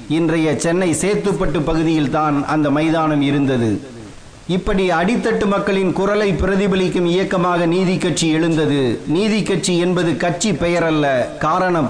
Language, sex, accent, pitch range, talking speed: Tamil, male, native, 155-185 Hz, 105 wpm